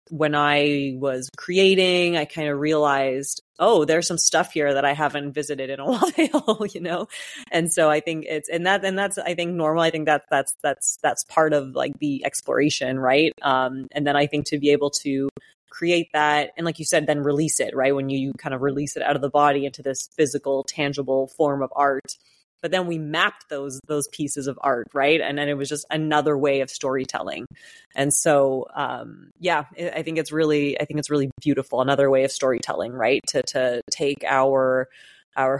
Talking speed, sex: 210 wpm, female